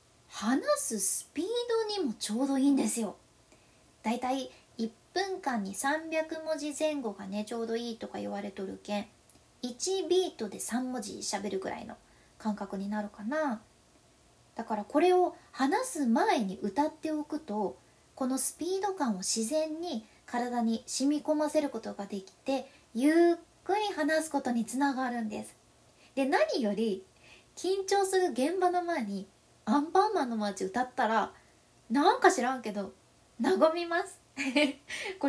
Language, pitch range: Japanese, 220-315 Hz